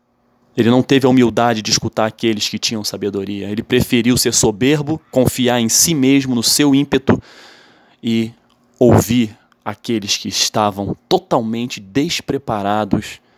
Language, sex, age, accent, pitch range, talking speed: Portuguese, male, 20-39, Brazilian, 105-130 Hz, 130 wpm